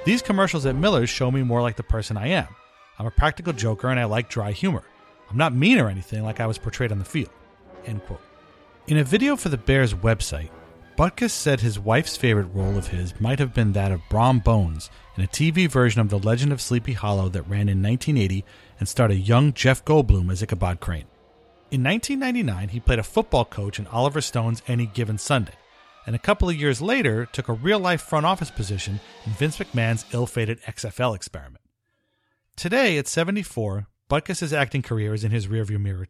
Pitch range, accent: 105-145 Hz, American